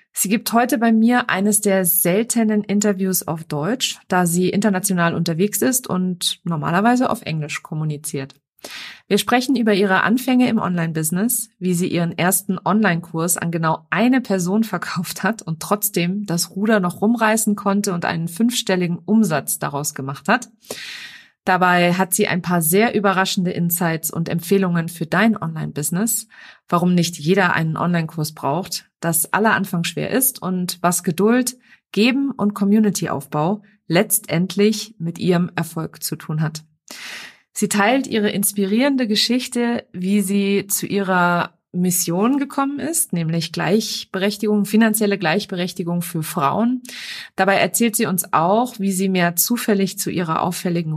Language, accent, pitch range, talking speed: German, German, 170-215 Hz, 140 wpm